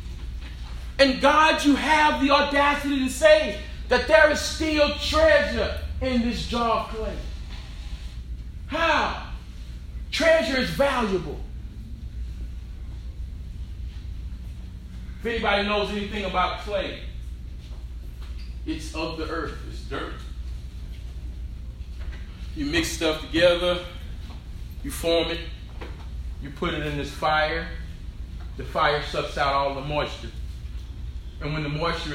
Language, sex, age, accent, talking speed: English, male, 30-49, American, 110 wpm